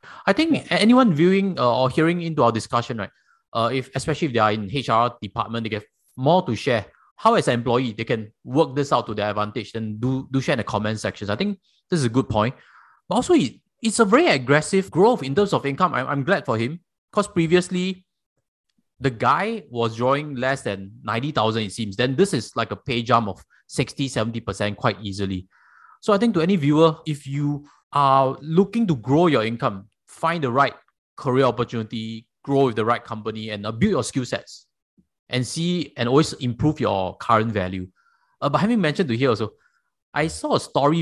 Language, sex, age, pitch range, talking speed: English, male, 20-39, 115-160 Hz, 205 wpm